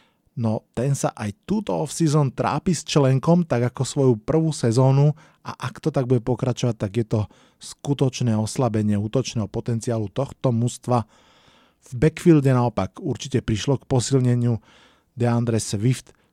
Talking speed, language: 140 wpm, Slovak